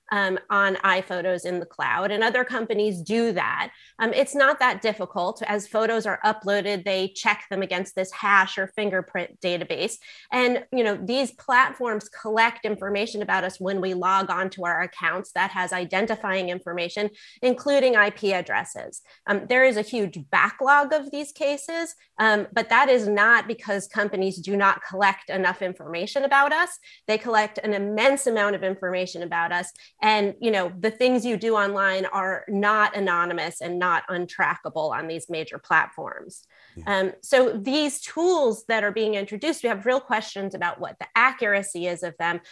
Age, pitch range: 30-49, 185-225 Hz